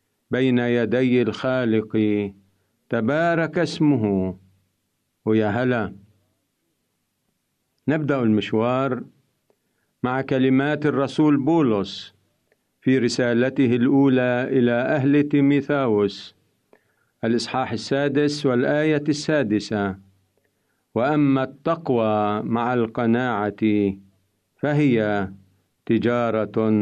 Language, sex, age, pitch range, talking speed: Arabic, male, 50-69, 105-140 Hz, 65 wpm